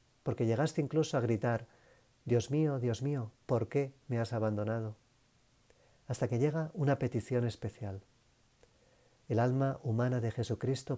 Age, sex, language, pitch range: 40-59, male, Spanish, 115-135 Hz